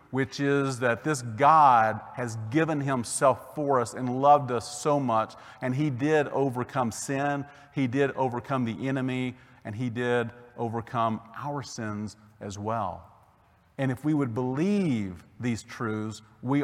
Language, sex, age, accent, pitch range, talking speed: English, male, 40-59, American, 105-130 Hz, 150 wpm